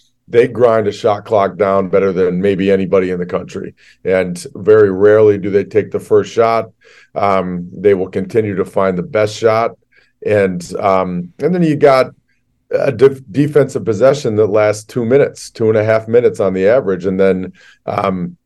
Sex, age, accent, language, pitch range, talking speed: male, 40-59, American, English, 95-120 Hz, 180 wpm